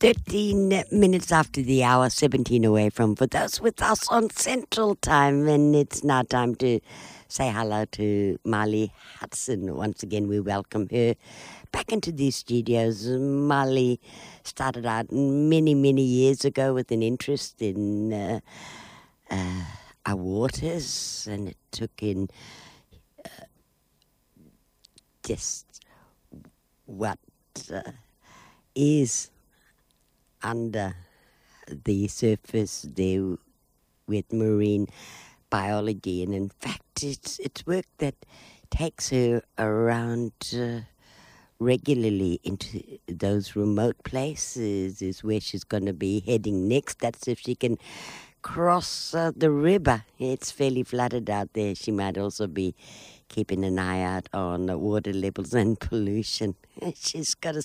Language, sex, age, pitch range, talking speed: English, female, 60-79, 100-135 Hz, 125 wpm